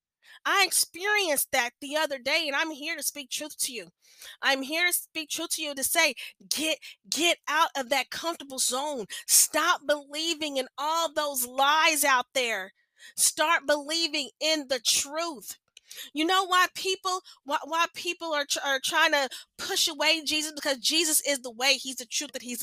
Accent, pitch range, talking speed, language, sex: American, 270-320 Hz, 180 wpm, English, female